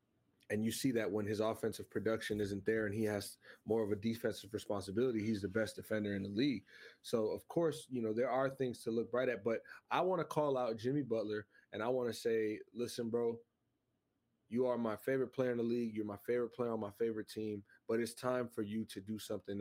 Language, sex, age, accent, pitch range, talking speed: English, male, 20-39, American, 105-120 Hz, 235 wpm